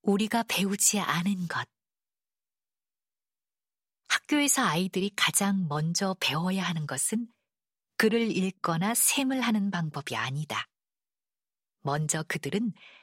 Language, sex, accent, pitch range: Korean, female, native, 155-215 Hz